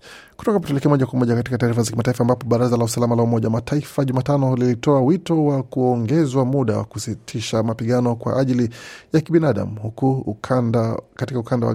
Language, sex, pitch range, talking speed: Swahili, male, 115-135 Hz, 180 wpm